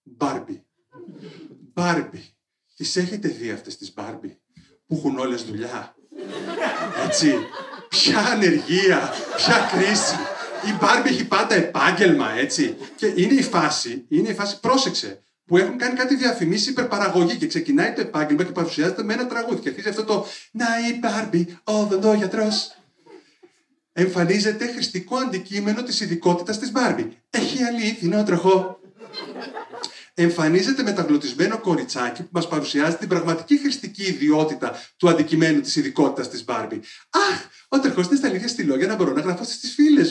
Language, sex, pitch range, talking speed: Greek, male, 170-255 Hz, 135 wpm